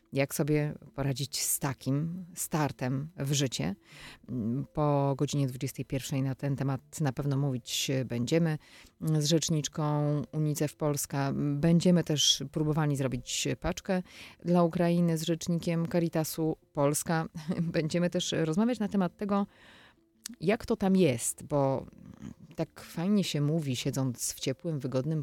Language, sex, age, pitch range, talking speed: Polish, female, 30-49, 135-170 Hz, 125 wpm